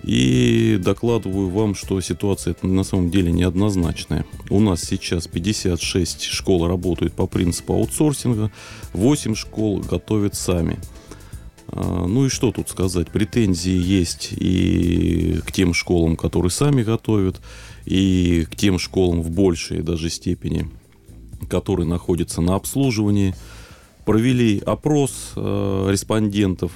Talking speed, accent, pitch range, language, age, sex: 115 wpm, native, 85-105 Hz, Russian, 30-49, male